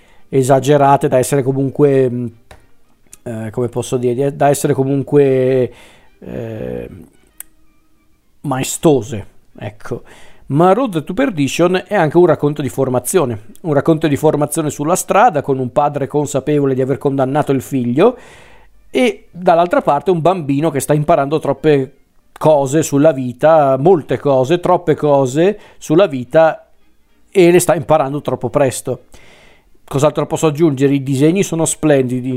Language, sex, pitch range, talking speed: Italian, male, 135-160 Hz, 130 wpm